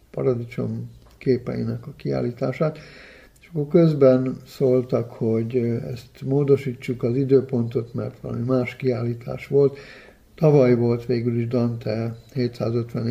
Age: 60-79